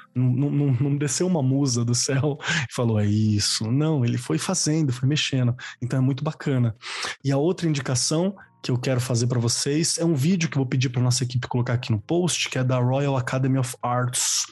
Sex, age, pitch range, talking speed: male, 20-39, 125-160 Hz, 220 wpm